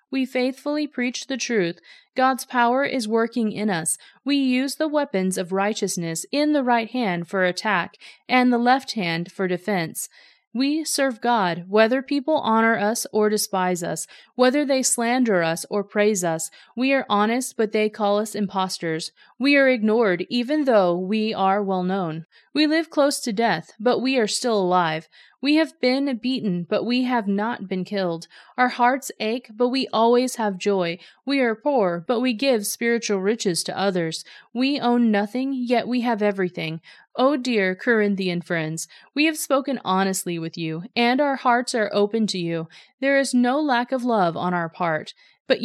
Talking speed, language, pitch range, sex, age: 175 wpm, English, 190-255 Hz, female, 30-49